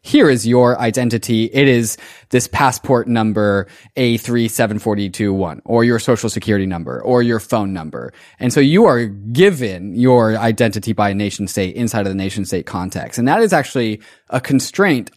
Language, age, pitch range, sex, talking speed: English, 20-39, 105-130 Hz, male, 165 wpm